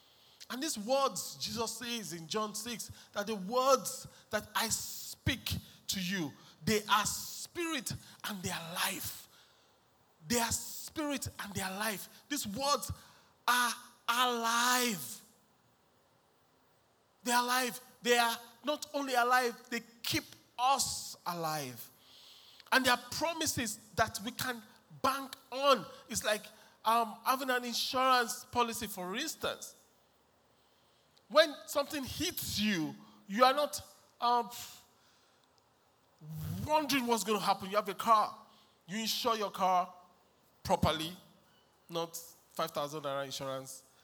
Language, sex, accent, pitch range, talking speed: English, male, Nigerian, 190-260 Hz, 120 wpm